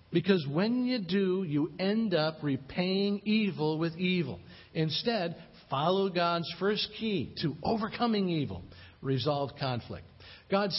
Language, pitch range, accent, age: English, 140-195 Hz, American, 50-69